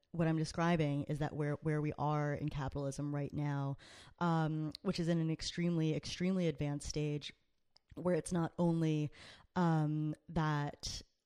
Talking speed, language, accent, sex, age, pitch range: 150 wpm, English, American, female, 20-39, 145-170 Hz